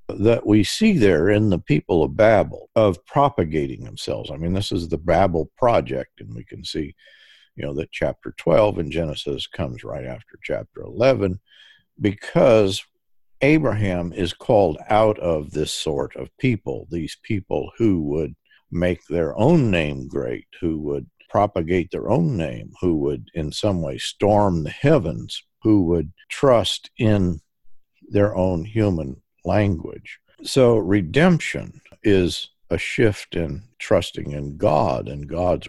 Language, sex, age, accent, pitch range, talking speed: English, male, 50-69, American, 75-105 Hz, 145 wpm